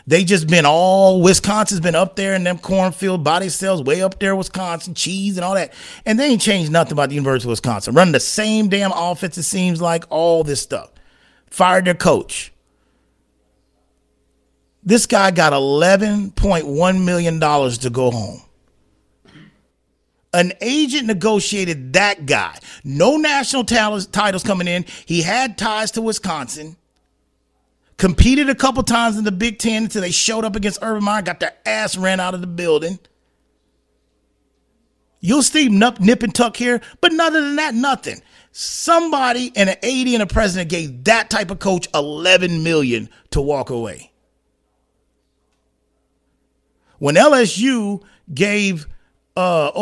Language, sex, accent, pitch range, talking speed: English, male, American, 170-220 Hz, 150 wpm